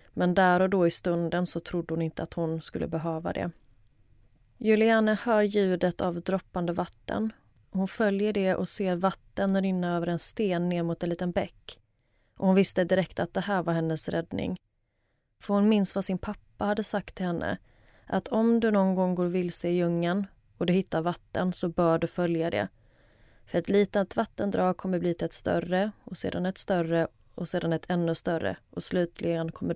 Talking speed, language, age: 195 wpm, Swedish, 30-49